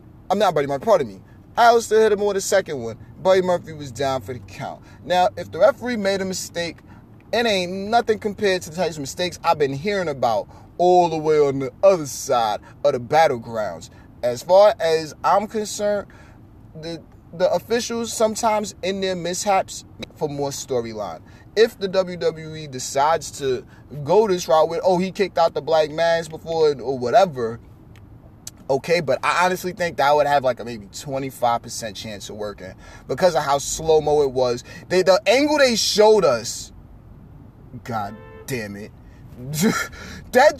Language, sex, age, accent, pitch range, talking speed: English, male, 30-49, American, 125-205 Hz, 175 wpm